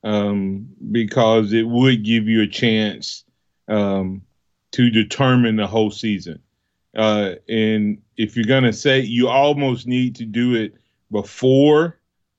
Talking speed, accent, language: 135 wpm, American, English